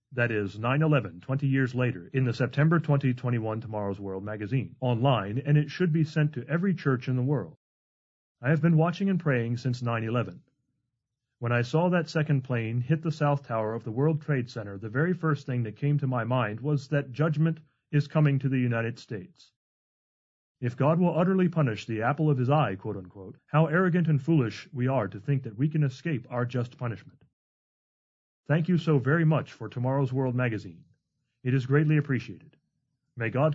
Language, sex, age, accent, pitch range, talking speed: English, male, 30-49, American, 120-150 Hz, 195 wpm